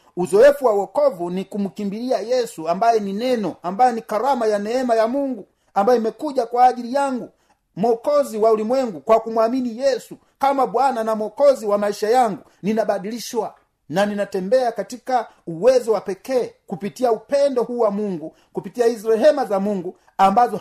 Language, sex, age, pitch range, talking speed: Swahili, male, 40-59, 185-250 Hz, 150 wpm